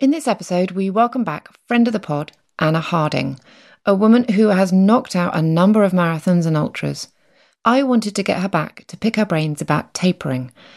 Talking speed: 200 wpm